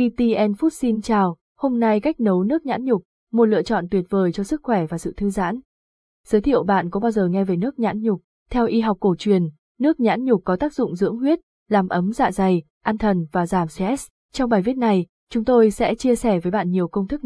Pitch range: 190-240 Hz